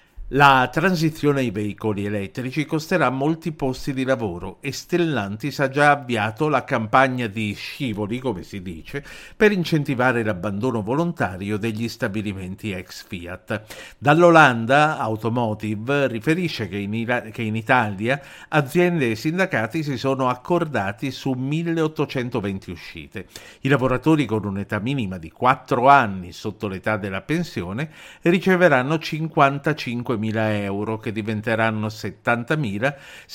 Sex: male